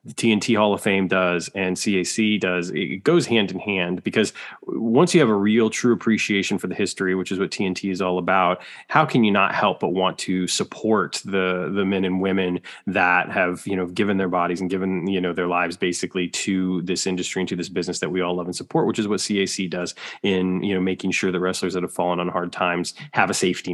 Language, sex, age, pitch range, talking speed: English, male, 20-39, 90-105 Hz, 240 wpm